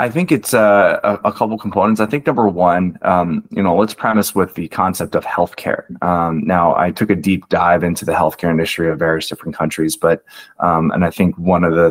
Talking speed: 220 wpm